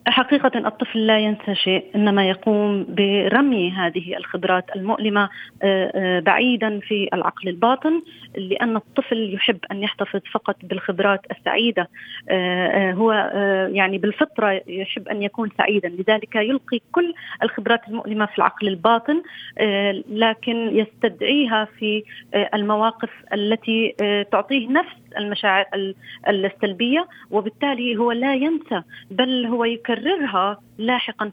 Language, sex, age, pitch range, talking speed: Arabic, female, 30-49, 205-255 Hz, 105 wpm